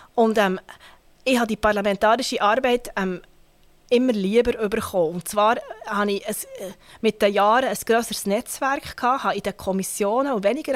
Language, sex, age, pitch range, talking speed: German, female, 30-49, 200-240 Hz, 160 wpm